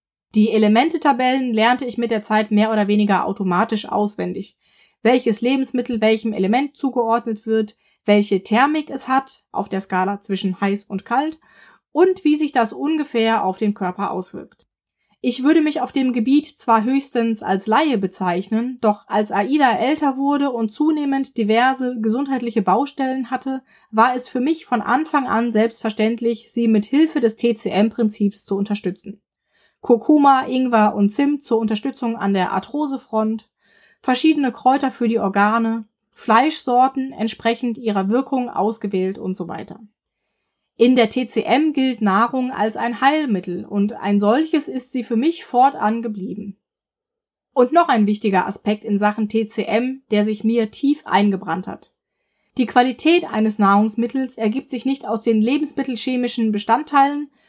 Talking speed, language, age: 145 wpm, German, 20-39